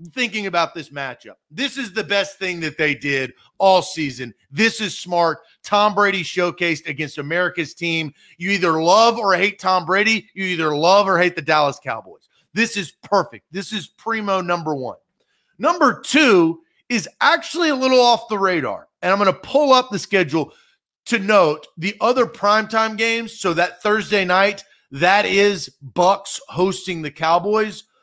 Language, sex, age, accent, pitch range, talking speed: English, male, 40-59, American, 150-210 Hz, 170 wpm